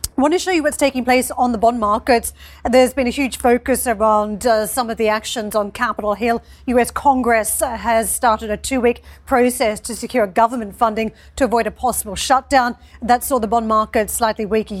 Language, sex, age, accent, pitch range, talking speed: English, female, 40-59, Australian, 220-255 Hz, 205 wpm